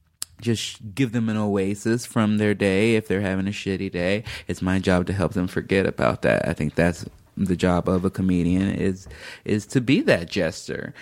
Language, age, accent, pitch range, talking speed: English, 20-39, American, 90-110 Hz, 200 wpm